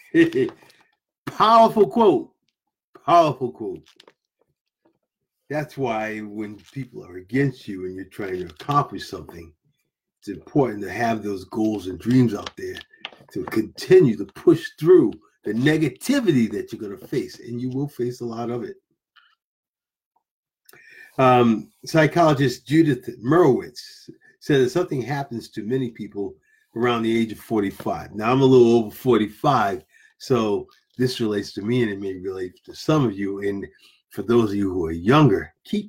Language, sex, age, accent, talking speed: English, male, 50-69, American, 150 wpm